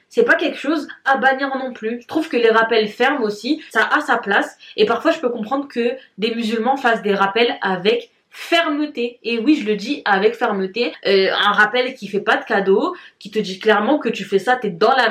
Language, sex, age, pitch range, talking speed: French, female, 20-39, 205-290 Hz, 230 wpm